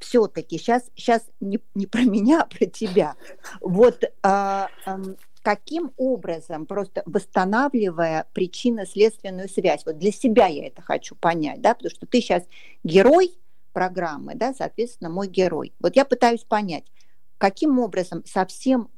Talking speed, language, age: 140 wpm, Russian, 40-59